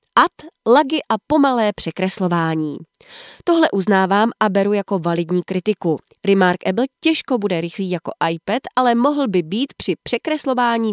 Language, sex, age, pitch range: Czech, female, 30-49, 180-240 Hz